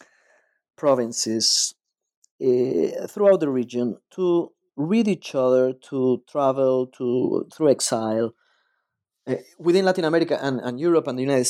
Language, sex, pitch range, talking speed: English, male, 130-180 Hz, 125 wpm